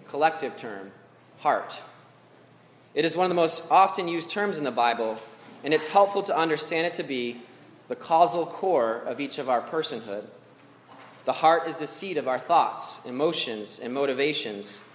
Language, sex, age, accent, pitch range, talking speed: English, male, 30-49, American, 135-170 Hz, 170 wpm